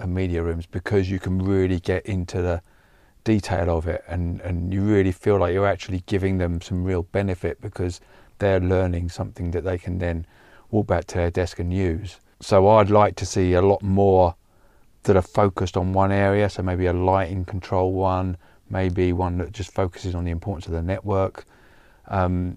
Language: English